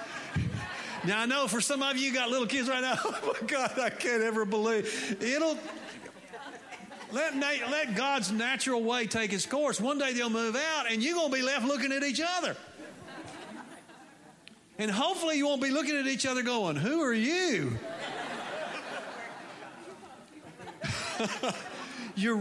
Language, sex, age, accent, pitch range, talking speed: English, male, 50-69, American, 180-260 Hz, 155 wpm